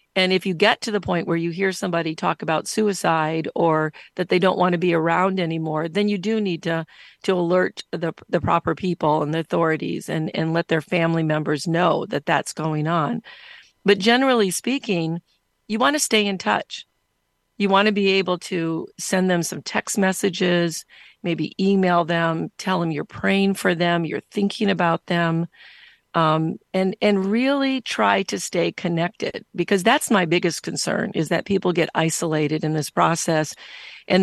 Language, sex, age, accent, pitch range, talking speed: English, female, 40-59, American, 160-195 Hz, 180 wpm